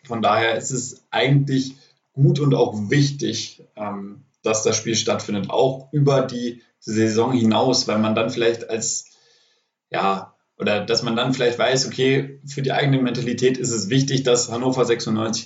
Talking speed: 160 wpm